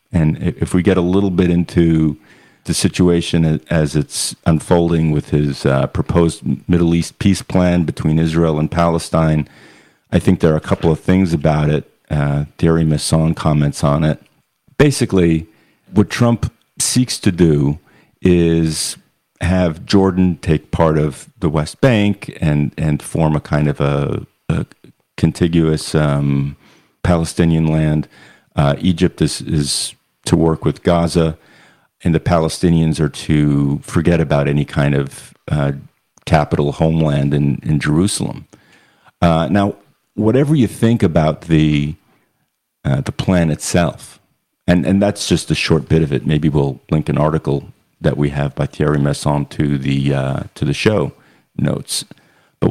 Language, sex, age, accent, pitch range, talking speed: English, male, 50-69, American, 75-90 Hz, 150 wpm